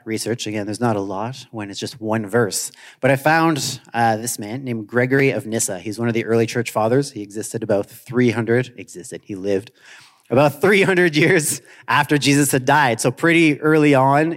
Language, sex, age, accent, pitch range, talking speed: English, male, 30-49, American, 110-140 Hz, 190 wpm